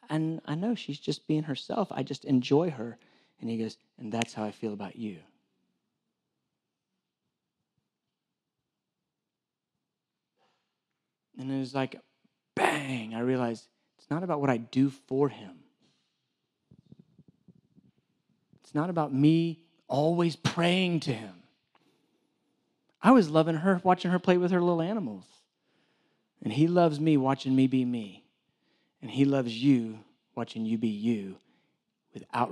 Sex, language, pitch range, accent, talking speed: male, English, 115-155 Hz, American, 135 wpm